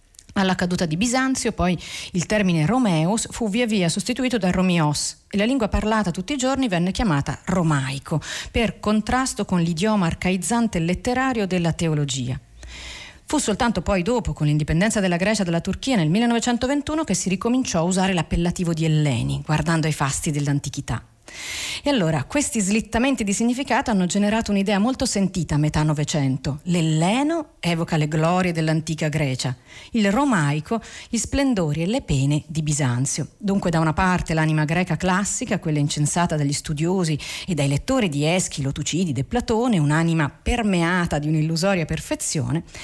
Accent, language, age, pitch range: native, Italian, 40-59, 155-215 Hz